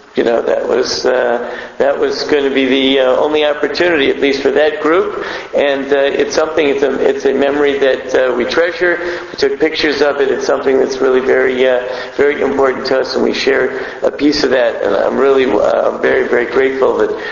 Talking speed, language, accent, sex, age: 215 wpm, English, American, male, 50-69